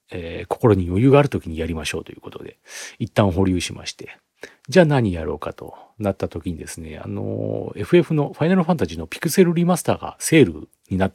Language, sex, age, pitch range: Japanese, male, 40-59, 95-140 Hz